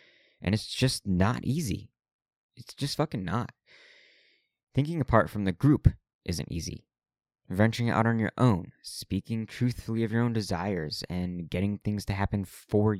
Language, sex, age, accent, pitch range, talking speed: English, male, 20-39, American, 95-115 Hz, 150 wpm